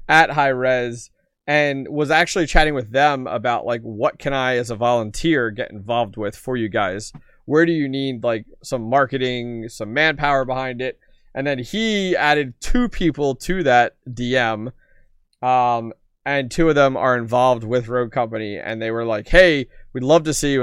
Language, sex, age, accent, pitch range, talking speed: English, male, 20-39, American, 120-160 Hz, 185 wpm